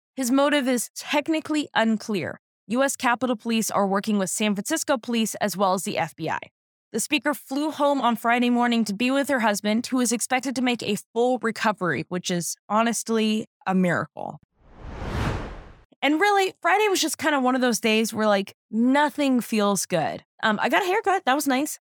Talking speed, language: 185 wpm, English